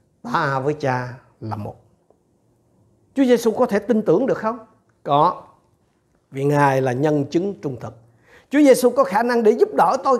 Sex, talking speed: male, 175 wpm